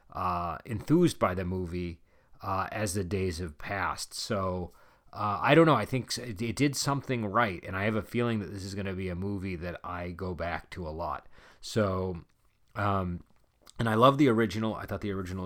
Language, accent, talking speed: English, American, 210 wpm